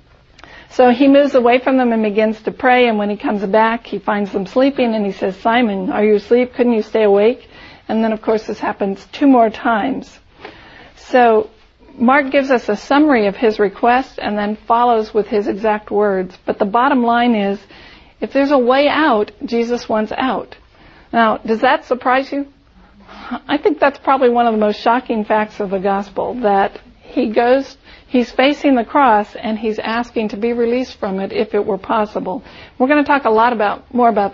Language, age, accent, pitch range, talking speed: English, 50-69, American, 215-250 Hz, 200 wpm